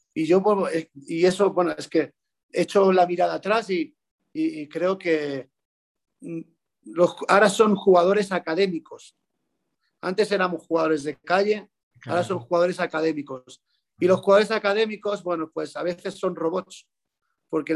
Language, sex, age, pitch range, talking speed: Spanish, male, 40-59, 155-190 Hz, 140 wpm